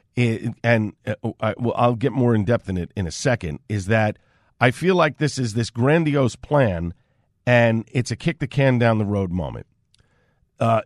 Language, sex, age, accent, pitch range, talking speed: English, male, 50-69, American, 110-140 Hz, 150 wpm